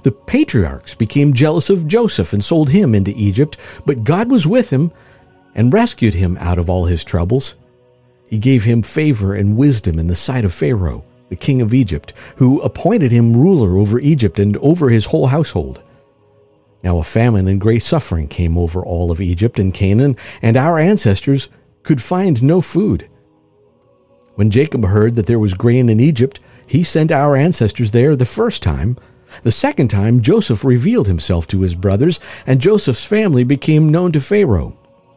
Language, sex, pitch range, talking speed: English, male, 100-140 Hz, 175 wpm